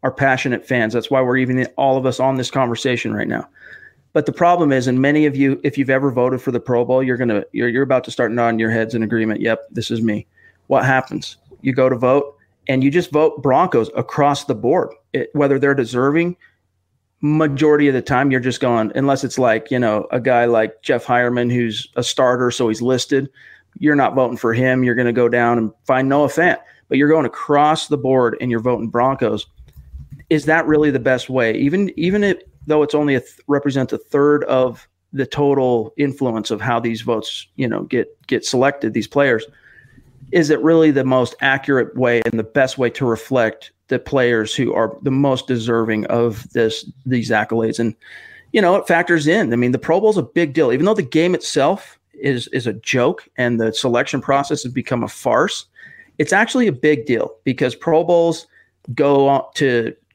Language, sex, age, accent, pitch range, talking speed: English, male, 40-59, American, 120-145 Hz, 205 wpm